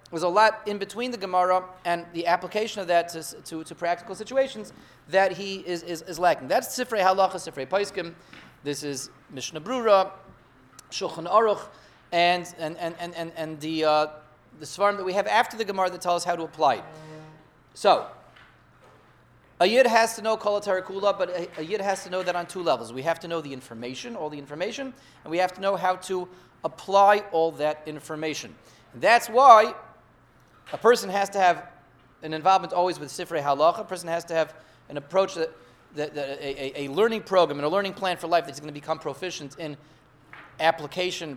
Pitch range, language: 150-195 Hz, English